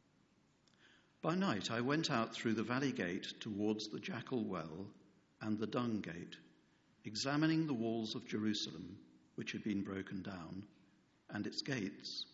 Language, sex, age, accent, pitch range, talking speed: English, male, 60-79, British, 105-135 Hz, 145 wpm